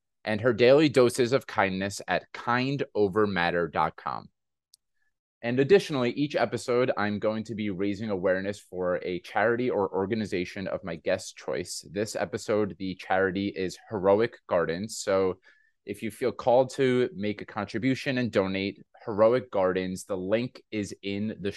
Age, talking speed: 20-39, 145 wpm